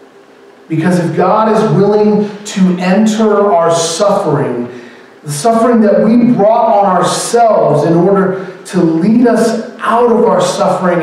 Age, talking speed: 40-59, 135 wpm